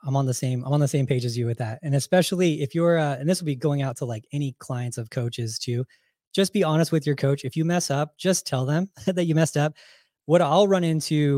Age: 20-39